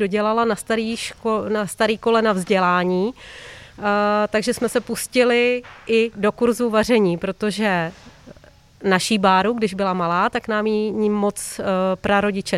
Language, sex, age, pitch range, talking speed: Czech, female, 30-49, 200-225 Hz, 135 wpm